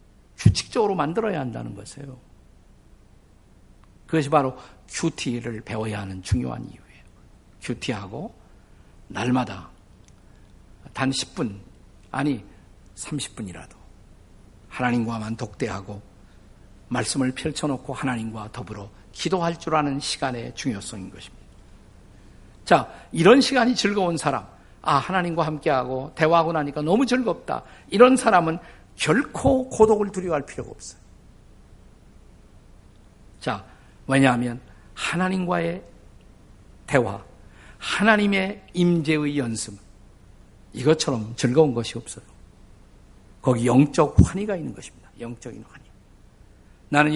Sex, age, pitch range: male, 50-69, 105-170 Hz